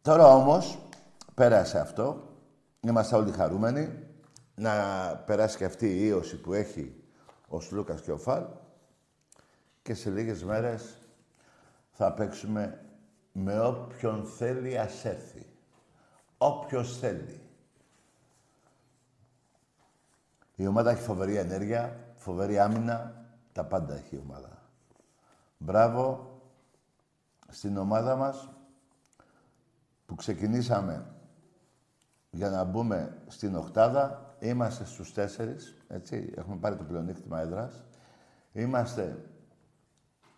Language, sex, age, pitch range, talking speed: Greek, male, 60-79, 100-130 Hz, 100 wpm